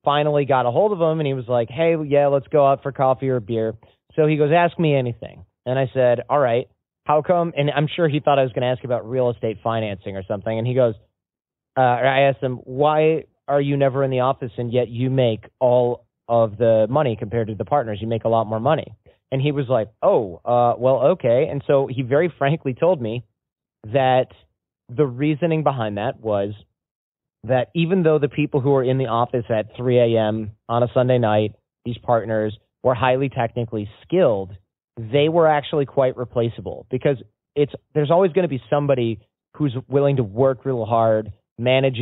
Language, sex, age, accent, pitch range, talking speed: English, male, 30-49, American, 115-140 Hz, 205 wpm